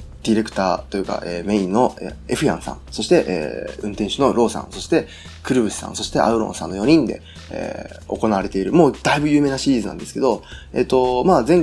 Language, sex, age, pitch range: Japanese, male, 20-39, 90-145 Hz